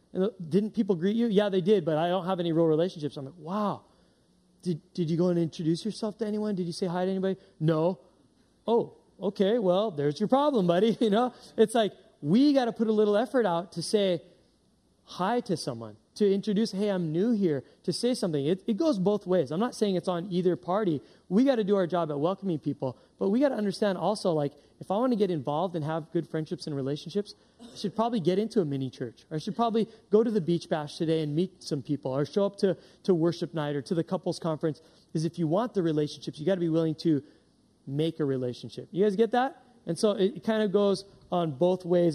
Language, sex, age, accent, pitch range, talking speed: English, male, 30-49, American, 160-205 Hz, 240 wpm